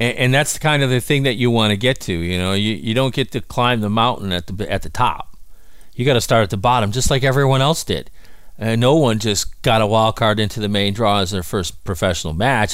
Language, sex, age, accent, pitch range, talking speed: English, male, 40-59, American, 95-125 Hz, 270 wpm